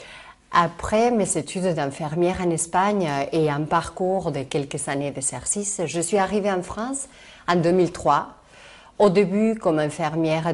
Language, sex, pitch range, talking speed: French, female, 160-195 Hz, 135 wpm